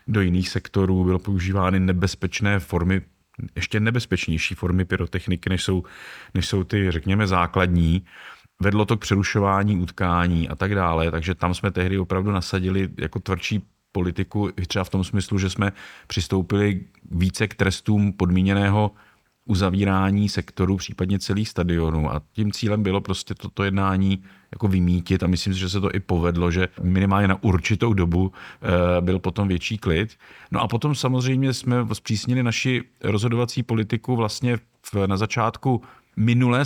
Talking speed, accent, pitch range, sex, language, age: 150 wpm, native, 95-110 Hz, male, Czech, 30-49